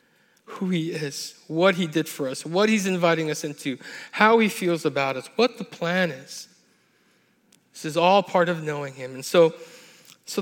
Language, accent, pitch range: English, American, 155-210 Hz